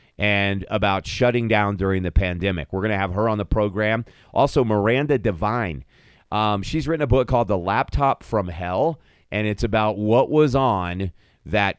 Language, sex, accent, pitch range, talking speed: English, male, American, 100-140 Hz, 175 wpm